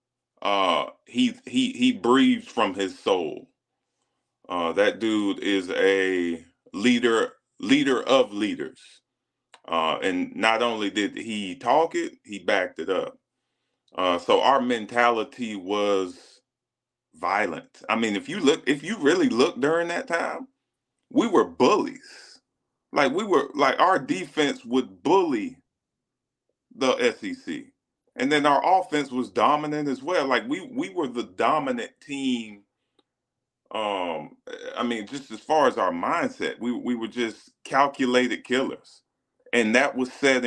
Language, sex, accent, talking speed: English, male, American, 140 wpm